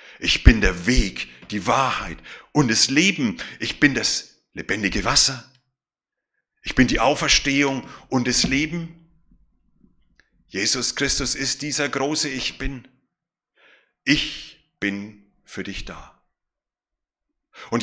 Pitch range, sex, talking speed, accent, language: 130-165 Hz, male, 115 wpm, German, German